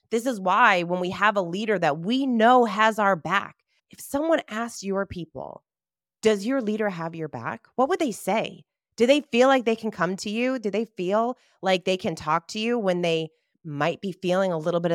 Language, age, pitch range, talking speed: English, 30-49, 160-230 Hz, 220 wpm